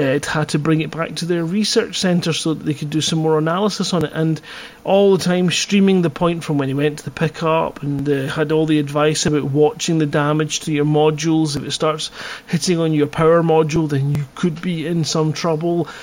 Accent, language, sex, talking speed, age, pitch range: British, English, male, 235 wpm, 30-49, 155-200 Hz